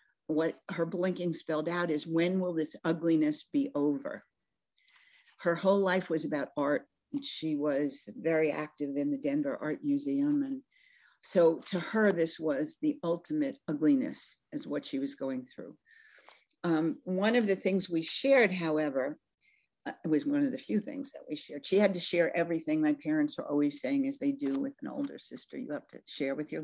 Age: 50-69